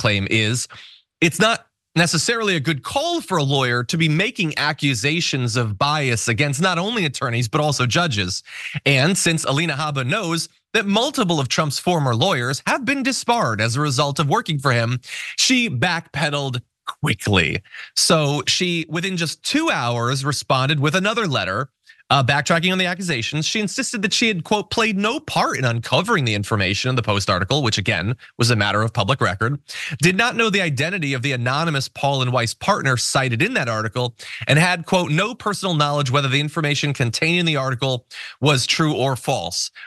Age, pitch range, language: 30-49, 125-175 Hz, English